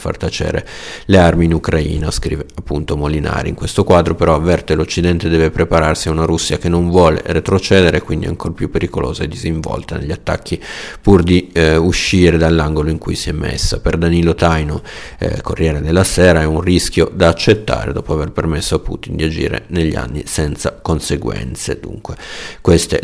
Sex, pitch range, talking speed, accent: male, 80-90 Hz, 175 wpm, native